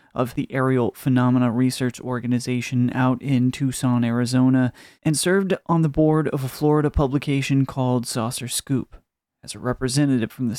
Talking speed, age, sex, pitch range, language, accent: 155 wpm, 30-49, male, 125-145 Hz, English, American